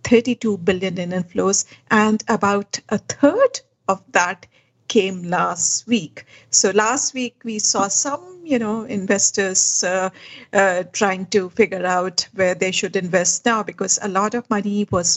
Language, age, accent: English, 60-79, Indian